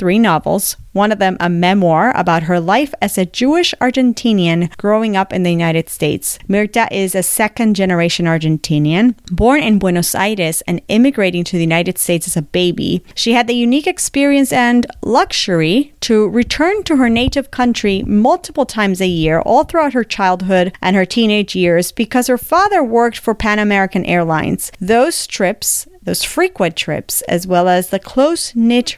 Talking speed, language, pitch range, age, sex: 170 wpm, English, 180-245 Hz, 40-59, female